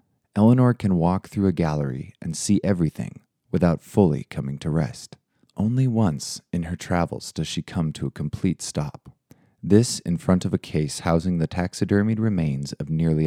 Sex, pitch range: male, 75-105 Hz